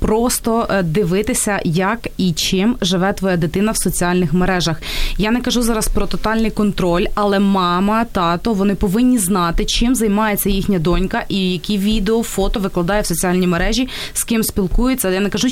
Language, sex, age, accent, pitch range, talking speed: Ukrainian, female, 20-39, native, 185-215 Hz, 160 wpm